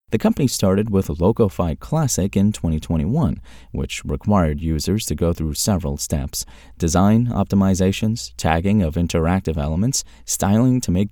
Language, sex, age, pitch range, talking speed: English, male, 30-49, 80-105 Hz, 135 wpm